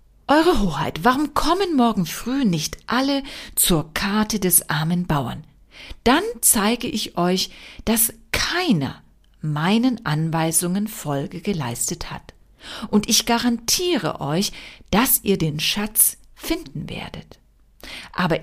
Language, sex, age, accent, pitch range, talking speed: German, female, 50-69, German, 165-235 Hz, 115 wpm